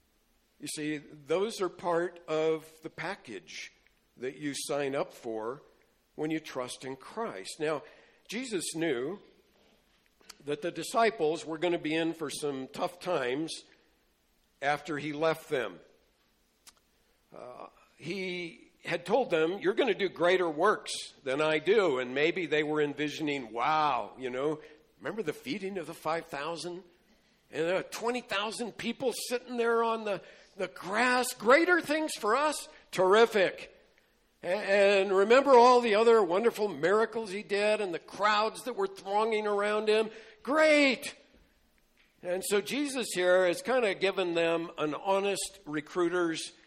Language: English